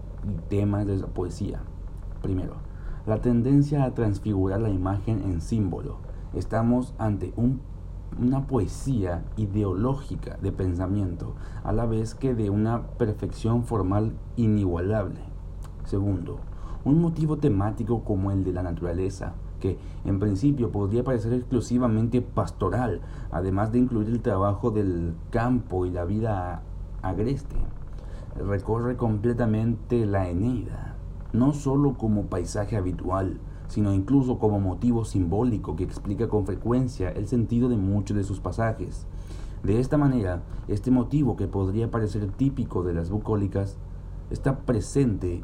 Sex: male